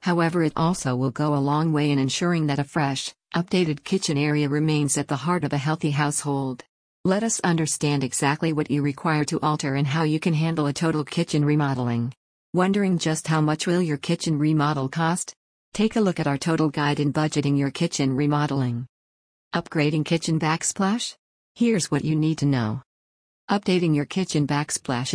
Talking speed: 180 wpm